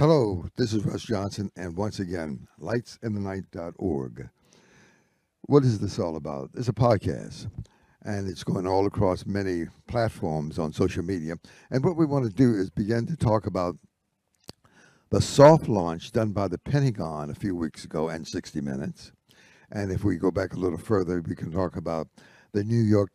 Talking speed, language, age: 175 wpm, English, 60-79